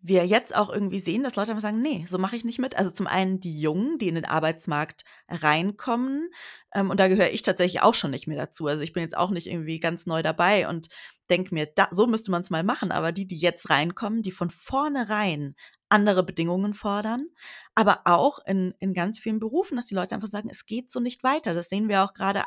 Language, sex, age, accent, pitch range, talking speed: German, female, 30-49, German, 175-215 Hz, 235 wpm